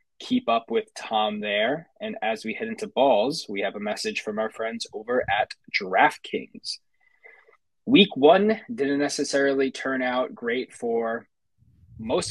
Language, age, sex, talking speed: English, 20-39, male, 145 wpm